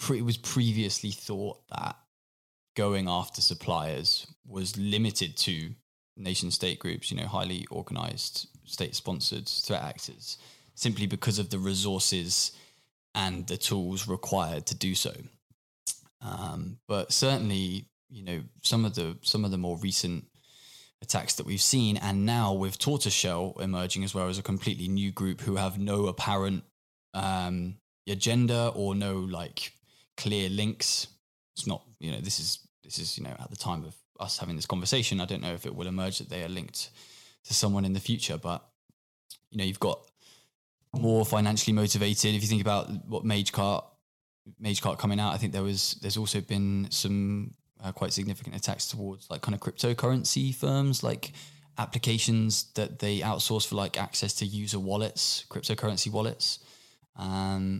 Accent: British